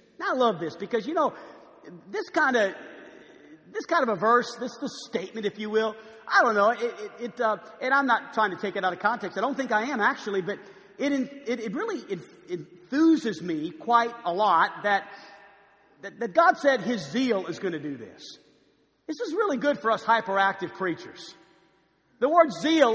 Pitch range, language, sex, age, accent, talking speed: 200-280 Hz, English, male, 50-69, American, 200 wpm